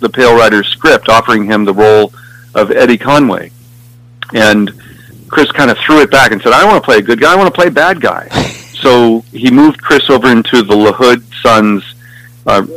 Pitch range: 105-120 Hz